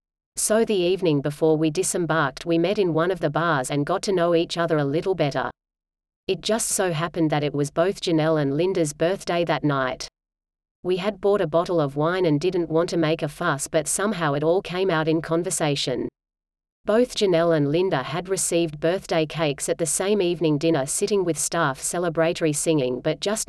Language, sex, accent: English, female, Australian